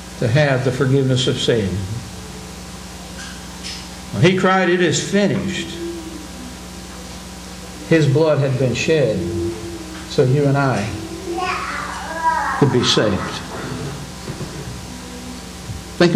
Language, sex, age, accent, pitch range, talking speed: English, male, 60-79, American, 125-185 Hz, 90 wpm